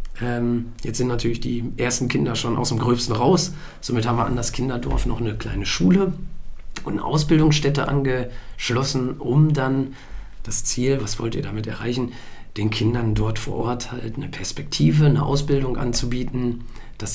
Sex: male